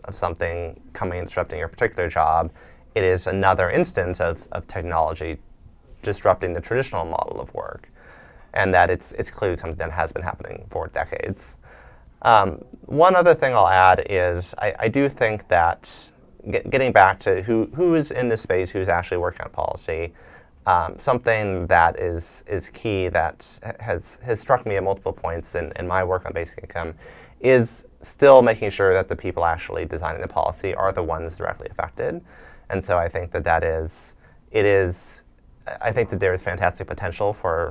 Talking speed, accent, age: 180 wpm, American, 30-49